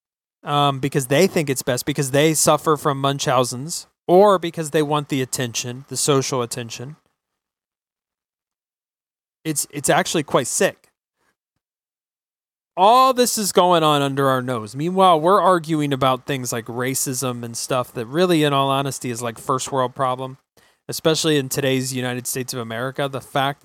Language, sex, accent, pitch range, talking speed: English, male, American, 125-145 Hz, 155 wpm